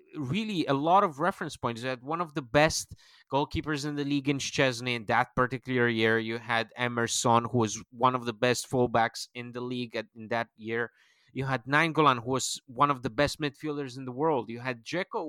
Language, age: English, 30-49